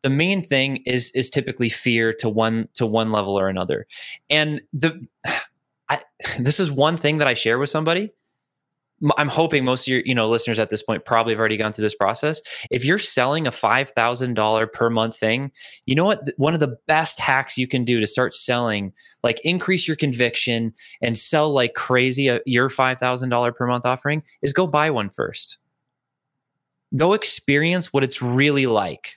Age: 20-39